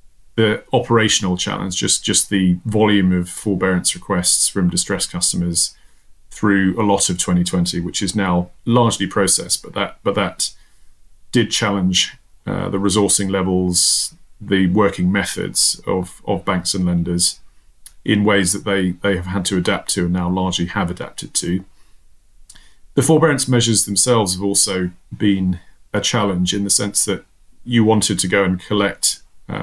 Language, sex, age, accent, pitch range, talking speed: English, male, 30-49, British, 90-100 Hz, 155 wpm